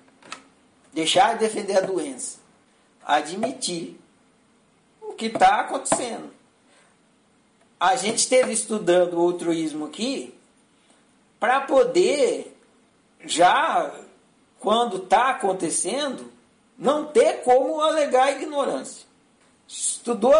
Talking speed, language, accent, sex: 85 wpm, Portuguese, Brazilian, male